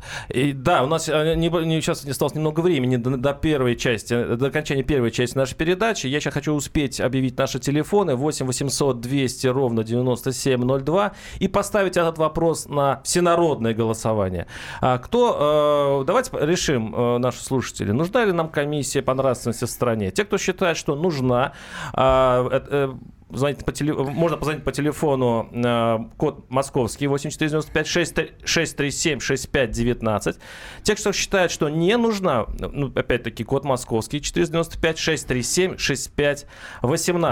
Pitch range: 125-160 Hz